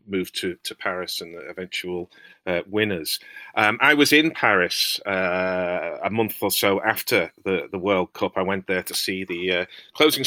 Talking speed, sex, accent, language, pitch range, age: 185 wpm, male, British, English, 95-115 Hz, 40-59